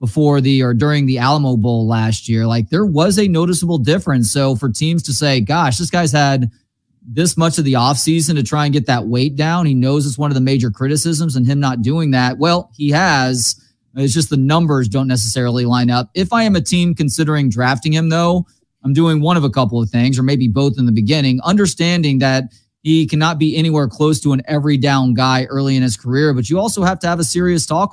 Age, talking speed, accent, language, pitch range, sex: 30-49, 230 wpm, American, English, 125-160 Hz, male